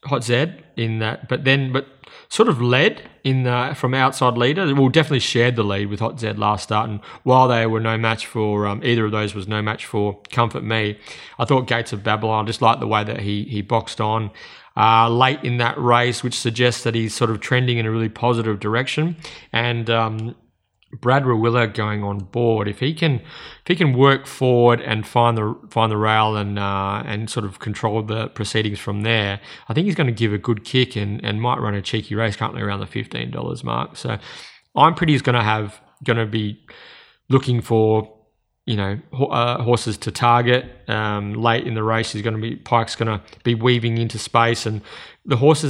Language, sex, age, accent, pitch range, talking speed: English, male, 30-49, Australian, 105-125 Hz, 215 wpm